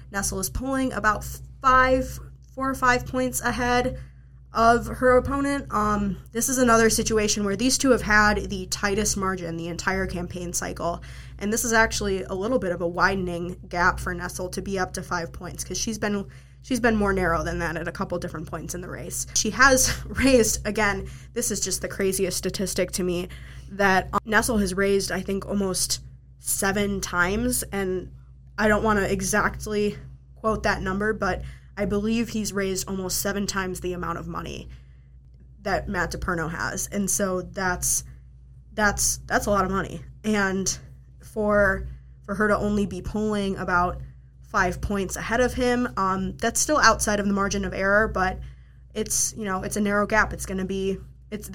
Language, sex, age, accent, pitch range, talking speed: English, female, 20-39, American, 175-215 Hz, 185 wpm